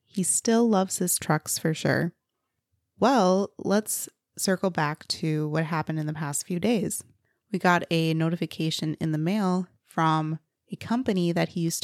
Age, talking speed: 20-39, 160 wpm